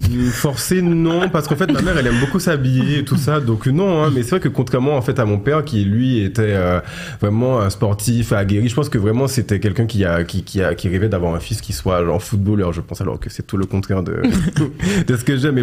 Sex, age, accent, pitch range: male, 20-39, French, 95-125 Hz